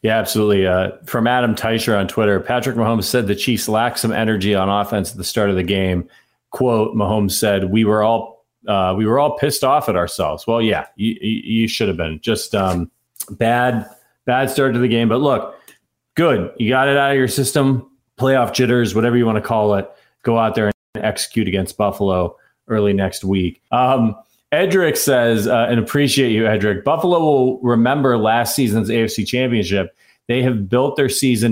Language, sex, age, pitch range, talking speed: English, male, 30-49, 100-125 Hz, 190 wpm